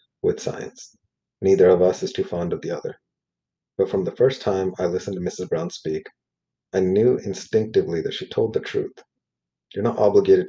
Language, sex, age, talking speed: English, male, 30-49, 190 wpm